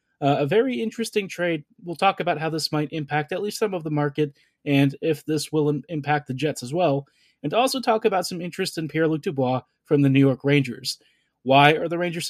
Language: English